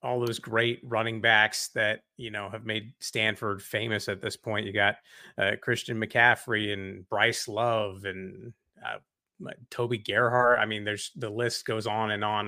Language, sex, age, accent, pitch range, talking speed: English, male, 30-49, American, 115-135 Hz, 175 wpm